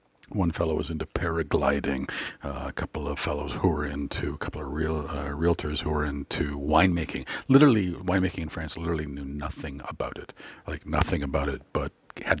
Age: 50-69